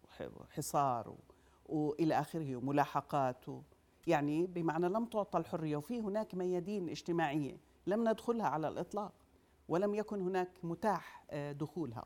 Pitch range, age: 165-215 Hz, 40-59